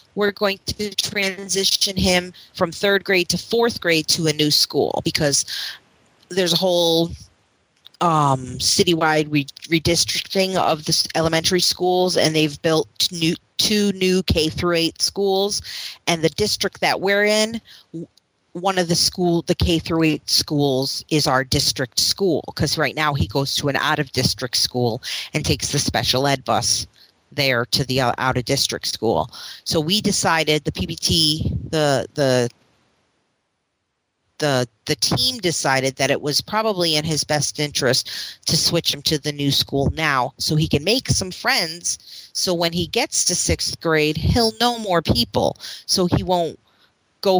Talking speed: 160 wpm